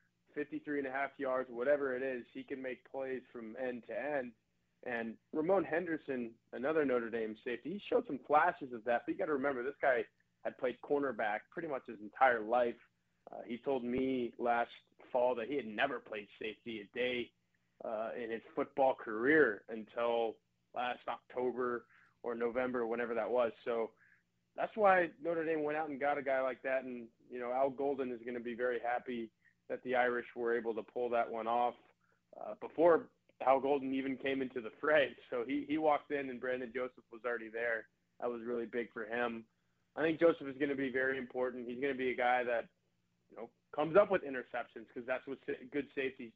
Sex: male